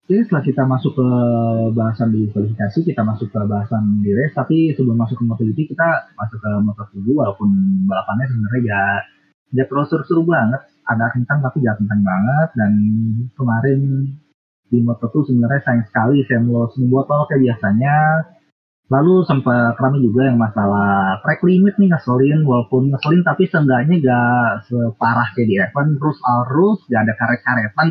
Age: 30-49